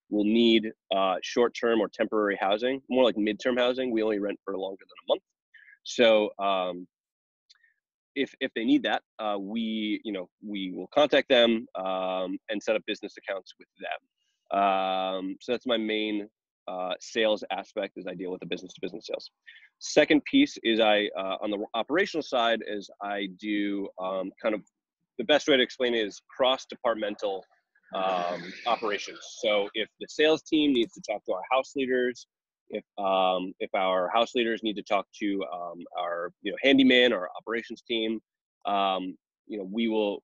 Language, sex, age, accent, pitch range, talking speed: English, male, 20-39, American, 95-125 Hz, 175 wpm